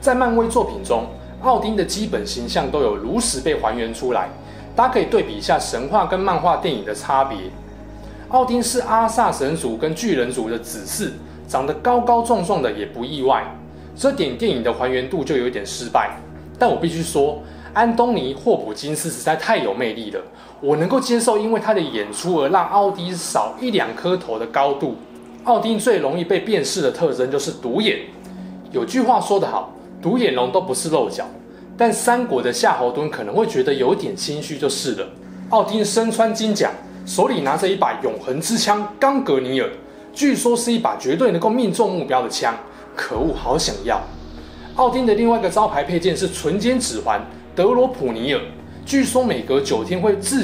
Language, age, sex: Chinese, 20-39, male